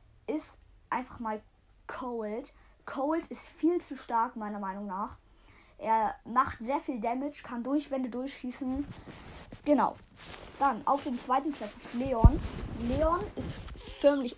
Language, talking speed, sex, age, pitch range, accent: German, 130 wpm, female, 20-39, 215-260 Hz, German